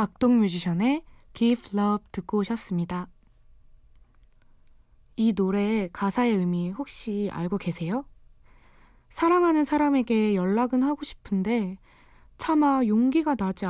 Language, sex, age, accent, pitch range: Korean, female, 20-39, native, 190-275 Hz